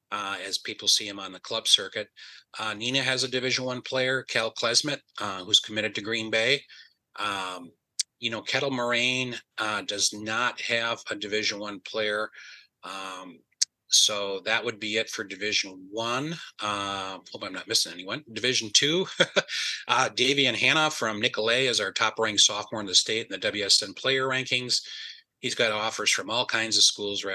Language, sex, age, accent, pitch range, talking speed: English, male, 30-49, American, 105-120 Hz, 175 wpm